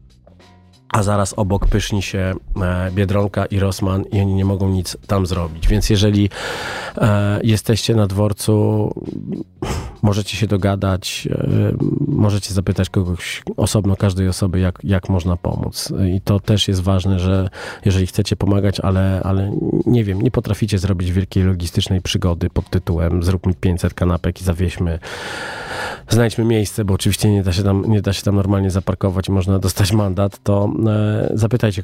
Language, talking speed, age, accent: Polish, 145 wpm, 40-59, native